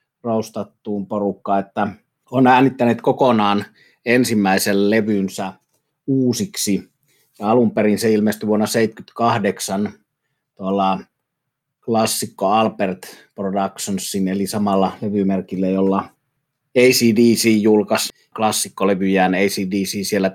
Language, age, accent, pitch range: Finnish, 30-49, native, 95-115 Hz